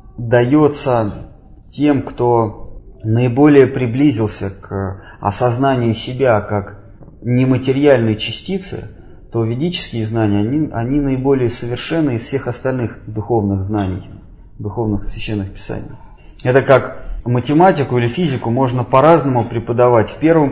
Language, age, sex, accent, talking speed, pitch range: Russian, 30-49, male, native, 105 wpm, 110-135 Hz